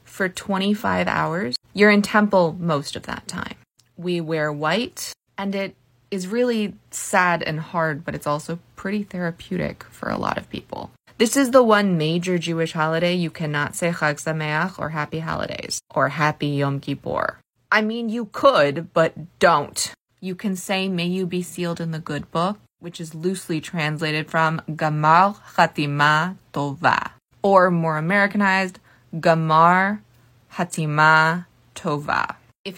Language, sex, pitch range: English, female, 155-195 Hz